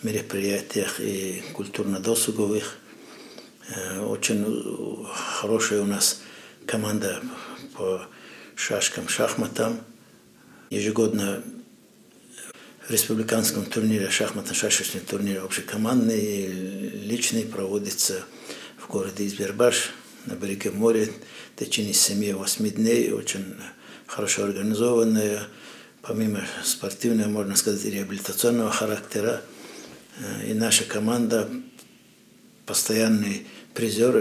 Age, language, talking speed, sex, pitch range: 60-79, Russian, 80 wpm, male, 100-120 Hz